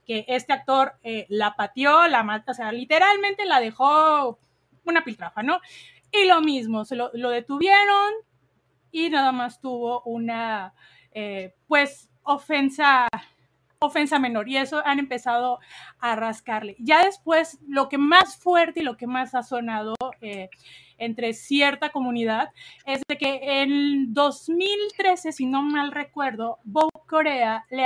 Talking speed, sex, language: 140 wpm, female, Spanish